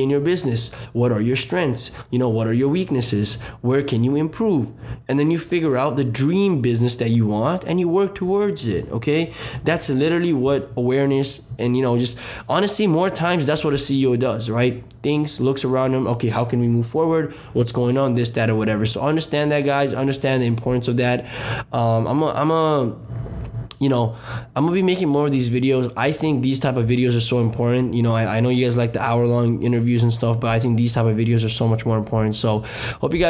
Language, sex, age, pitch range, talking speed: English, male, 20-39, 120-145 Hz, 230 wpm